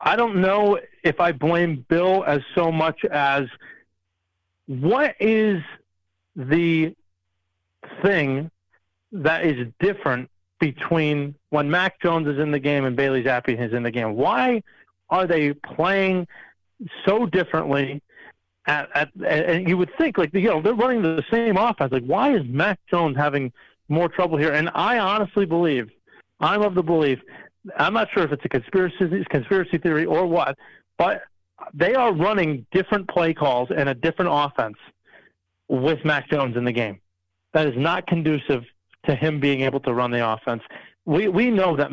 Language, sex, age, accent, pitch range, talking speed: English, male, 40-59, American, 130-180 Hz, 160 wpm